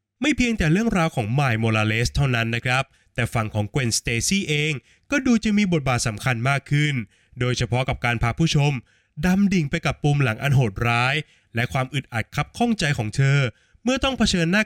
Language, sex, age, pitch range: Thai, male, 20-39, 120-170 Hz